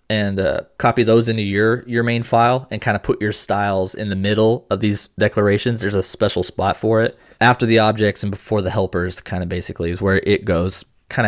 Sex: male